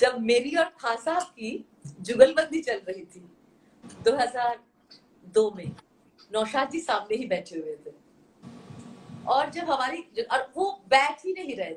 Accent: Indian